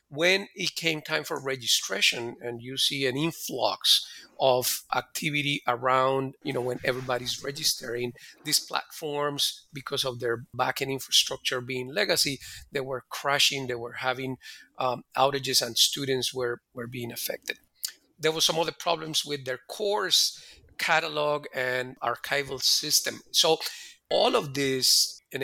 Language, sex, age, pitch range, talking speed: English, male, 40-59, 130-150 Hz, 140 wpm